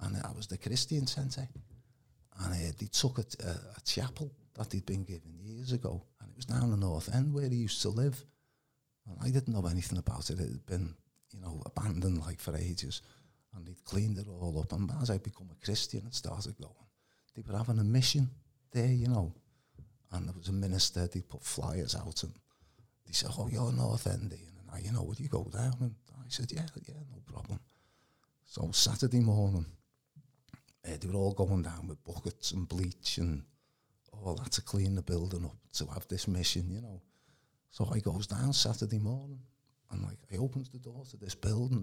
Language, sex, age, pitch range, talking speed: English, male, 50-69, 90-125 Hz, 210 wpm